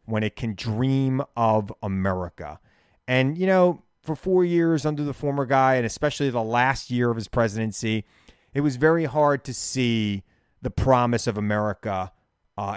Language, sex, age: English, male, 30-49